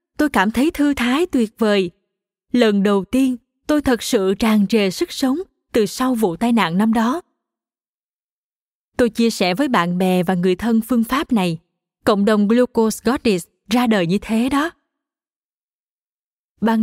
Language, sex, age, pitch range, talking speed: Vietnamese, female, 20-39, 195-255 Hz, 165 wpm